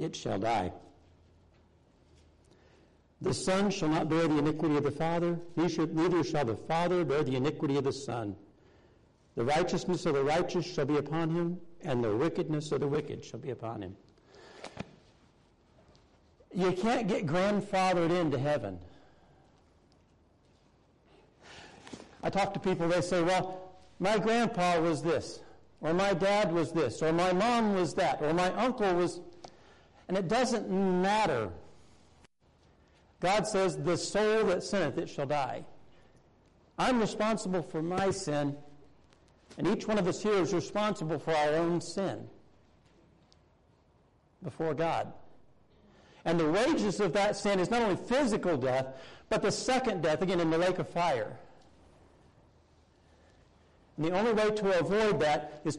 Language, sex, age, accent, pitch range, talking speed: English, male, 60-79, American, 140-190 Hz, 145 wpm